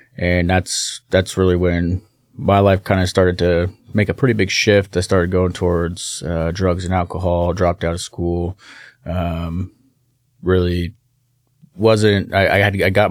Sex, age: male, 20-39